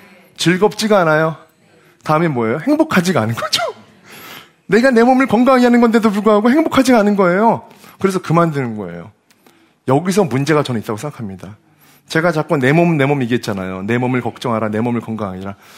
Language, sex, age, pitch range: Korean, male, 30-49, 115-195 Hz